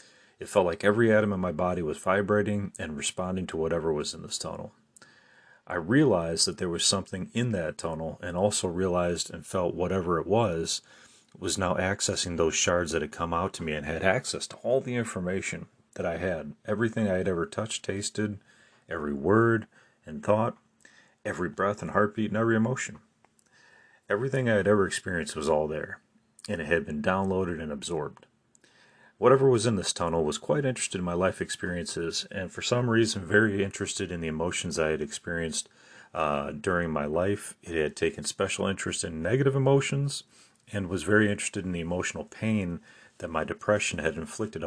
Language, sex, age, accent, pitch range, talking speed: English, male, 40-59, American, 85-105 Hz, 185 wpm